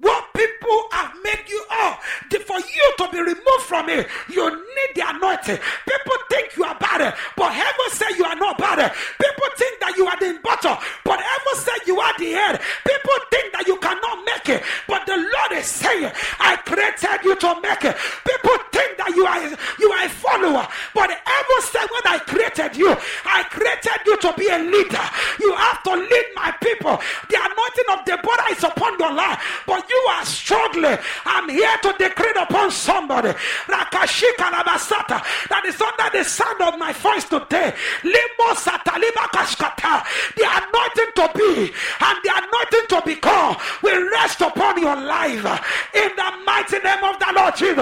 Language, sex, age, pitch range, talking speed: English, male, 40-59, 355-455 Hz, 175 wpm